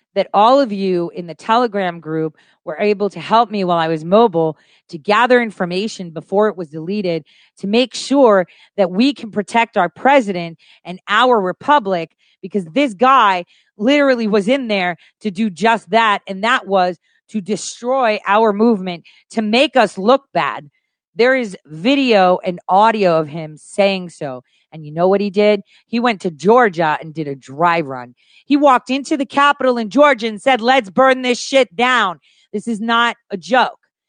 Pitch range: 180-235 Hz